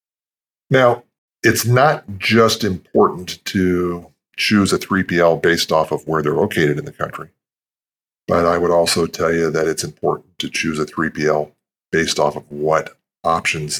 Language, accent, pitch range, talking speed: English, American, 80-95 Hz, 155 wpm